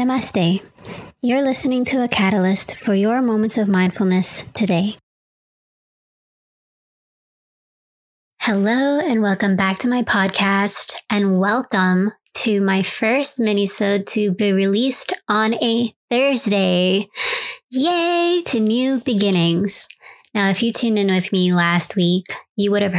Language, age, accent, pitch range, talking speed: English, 20-39, American, 185-230 Hz, 125 wpm